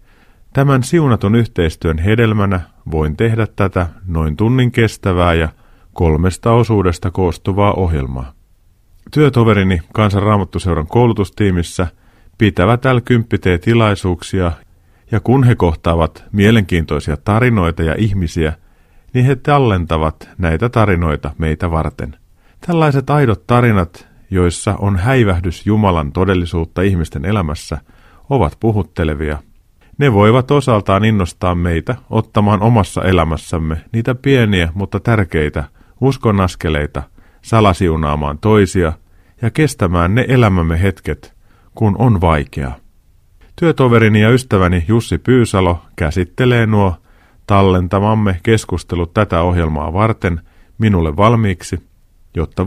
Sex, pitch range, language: male, 85-110 Hz, Finnish